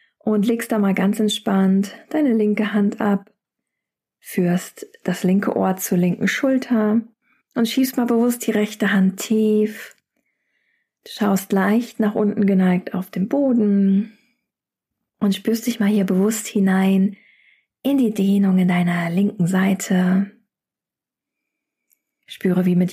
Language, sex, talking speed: German, female, 135 wpm